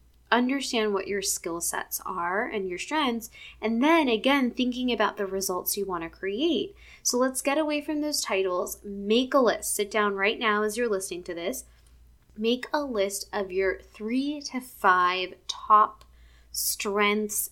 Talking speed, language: 170 wpm, English